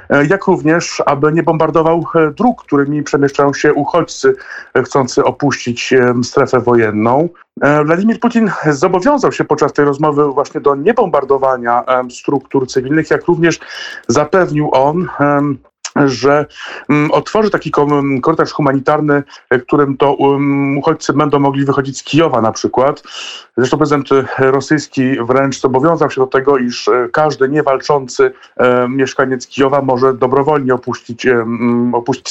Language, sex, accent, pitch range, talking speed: Polish, male, native, 130-155 Hz, 120 wpm